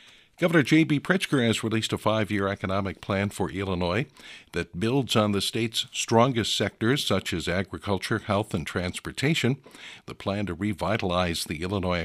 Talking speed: 150 wpm